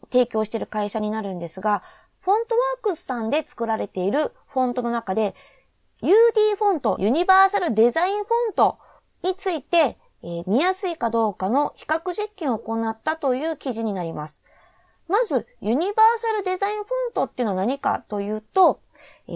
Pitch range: 220-345 Hz